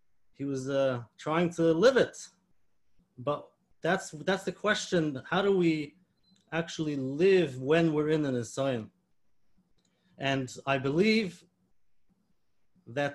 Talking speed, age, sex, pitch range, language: 120 wpm, 30-49, male, 135-175 Hz, English